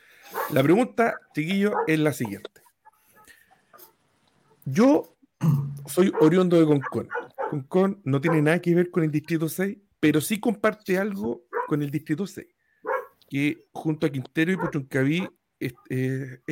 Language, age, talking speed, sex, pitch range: Spanish, 50-69, 135 wpm, male, 130-180 Hz